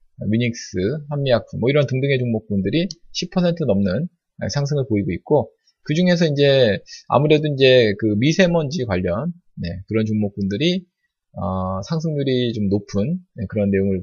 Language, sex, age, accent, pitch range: Korean, male, 20-39, native, 100-145 Hz